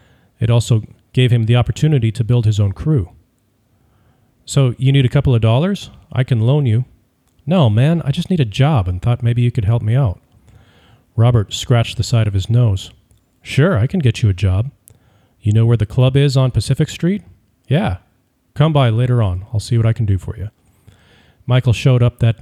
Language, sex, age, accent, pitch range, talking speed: English, male, 40-59, American, 105-125 Hz, 205 wpm